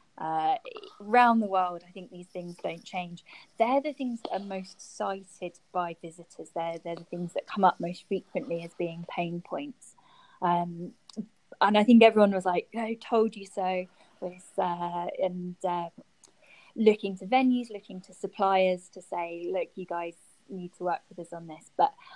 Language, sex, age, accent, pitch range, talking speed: English, female, 20-39, British, 180-230 Hz, 175 wpm